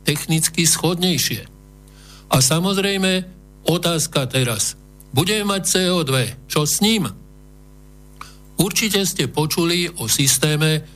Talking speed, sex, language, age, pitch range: 95 wpm, male, Slovak, 60-79, 130-165 Hz